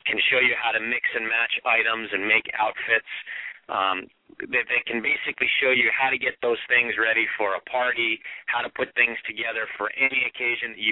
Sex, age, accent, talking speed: male, 40-59, American, 215 wpm